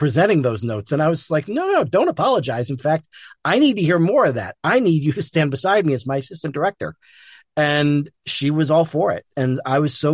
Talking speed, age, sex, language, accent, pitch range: 250 wpm, 40-59, male, English, American, 125-155 Hz